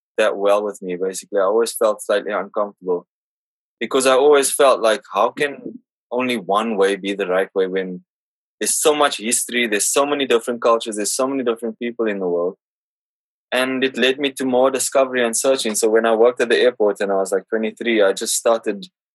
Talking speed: 205 wpm